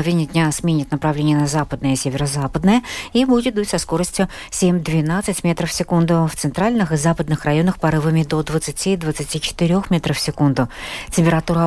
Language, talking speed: Russian, 150 wpm